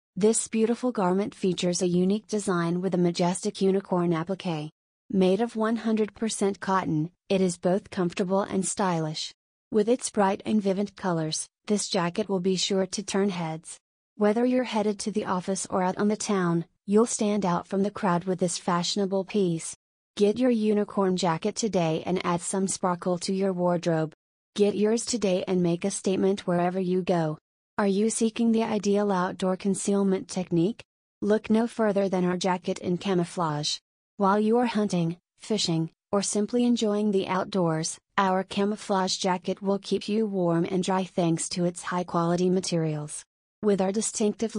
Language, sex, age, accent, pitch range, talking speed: English, female, 30-49, American, 180-210 Hz, 165 wpm